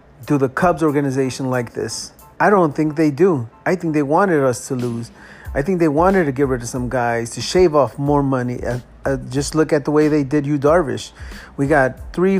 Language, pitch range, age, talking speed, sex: English, 135-170 Hz, 30-49, 225 wpm, male